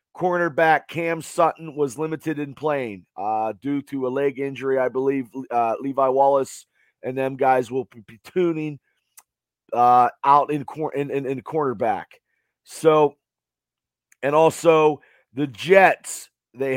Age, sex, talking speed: 40-59, male, 140 wpm